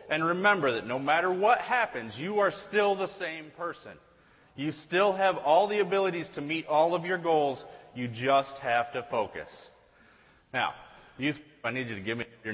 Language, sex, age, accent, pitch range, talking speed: English, male, 30-49, American, 120-175 Hz, 190 wpm